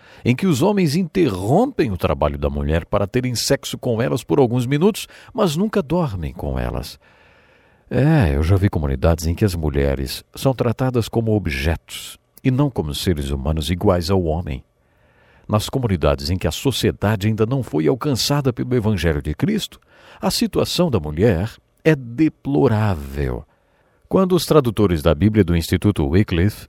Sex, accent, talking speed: male, Brazilian, 160 wpm